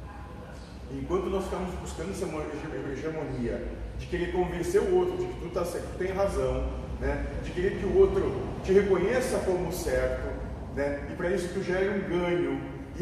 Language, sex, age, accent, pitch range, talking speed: Portuguese, male, 40-59, Brazilian, 120-185 Hz, 160 wpm